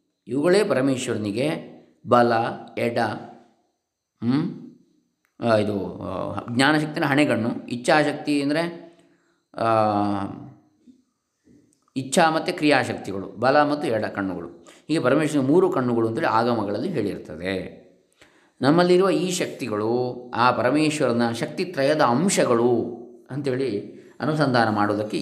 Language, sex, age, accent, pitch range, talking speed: Kannada, male, 20-39, native, 110-160 Hz, 80 wpm